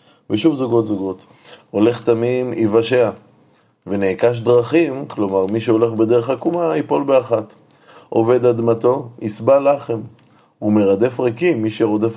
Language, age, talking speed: Hebrew, 20-39, 115 wpm